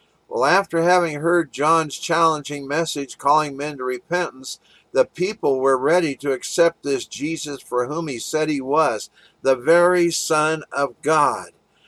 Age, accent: 50-69, American